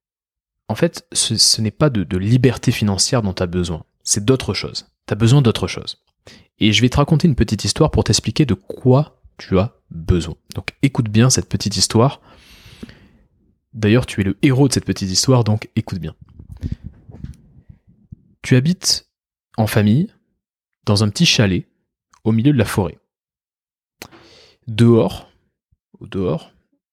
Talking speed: 155 wpm